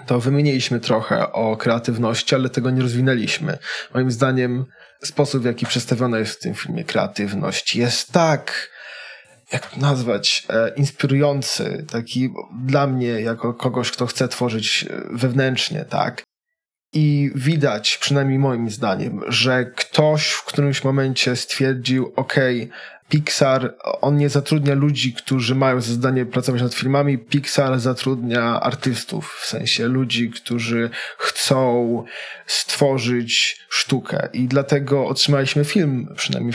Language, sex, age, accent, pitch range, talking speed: Polish, male, 20-39, native, 120-140 Hz, 120 wpm